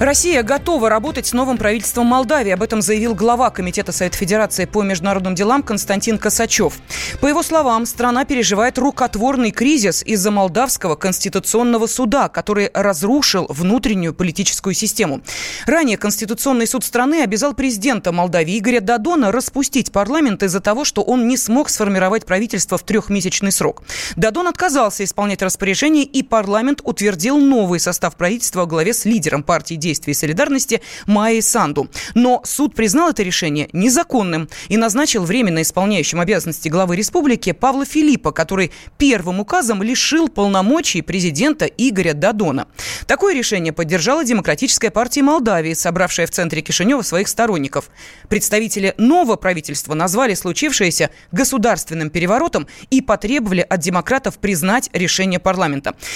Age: 20-39